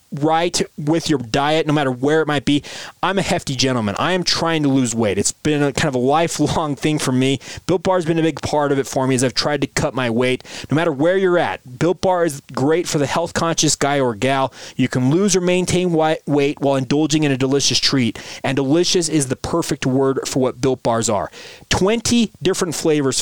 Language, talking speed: English, 235 wpm